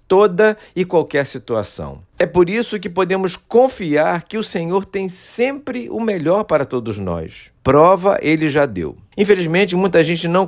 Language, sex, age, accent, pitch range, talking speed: Portuguese, male, 50-69, Brazilian, 125-185 Hz, 160 wpm